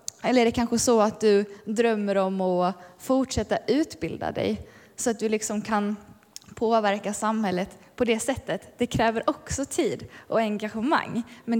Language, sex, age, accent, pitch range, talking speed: Swedish, female, 20-39, native, 215-270 Hz, 155 wpm